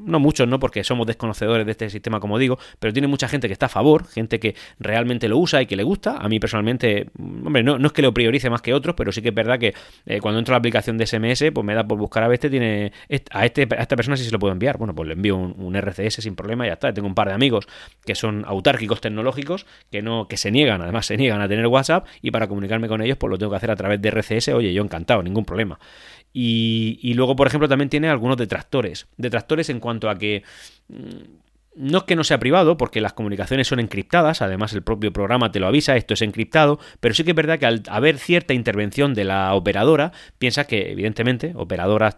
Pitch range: 105-130 Hz